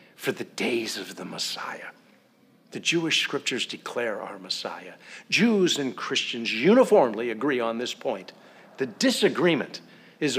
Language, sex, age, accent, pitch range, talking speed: English, male, 60-79, American, 120-195 Hz, 135 wpm